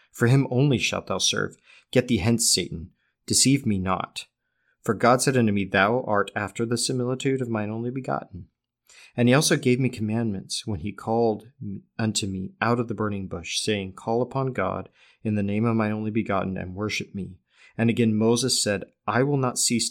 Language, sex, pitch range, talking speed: English, male, 95-115 Hz, 195 wpm